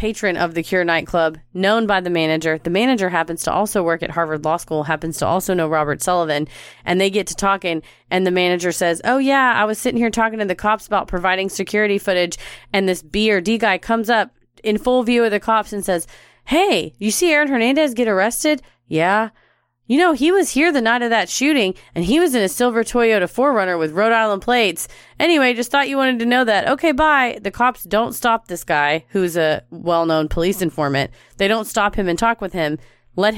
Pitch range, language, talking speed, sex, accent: 170-230 Hz, English, 225 wpm, female, American